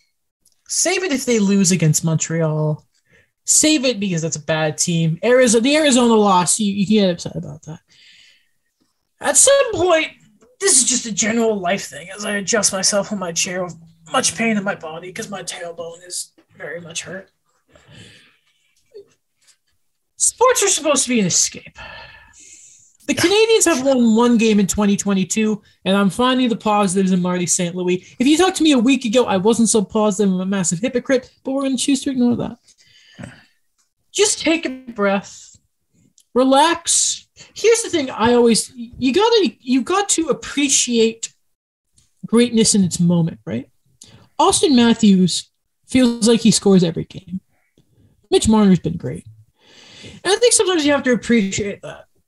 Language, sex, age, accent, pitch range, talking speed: English, male, 20-39, American, 185-270 Hz, 165 wpm